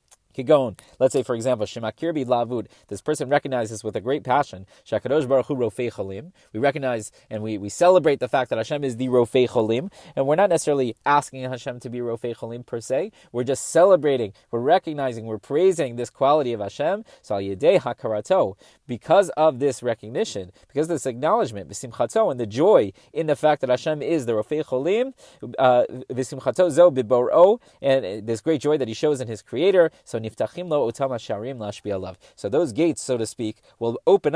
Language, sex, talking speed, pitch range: English, male, 155 wpm, 115-150 Hz